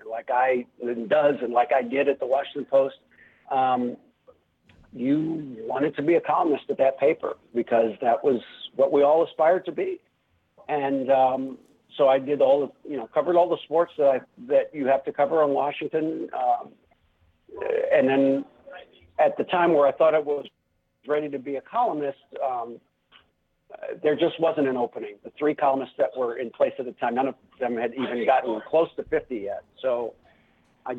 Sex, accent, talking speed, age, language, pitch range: male, American, 190 wpm, 50-69, English, 135-210 Hz